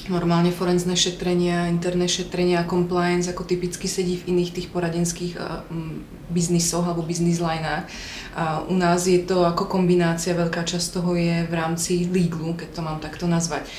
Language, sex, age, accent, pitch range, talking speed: Czech, female, 20-39, native, 170-180 Hz, 155 wpm